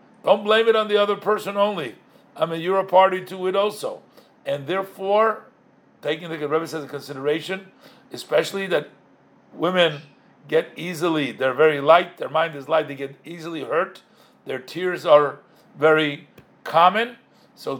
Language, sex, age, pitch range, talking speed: English, male, 50-69, 155-205 Hz, 155 wpm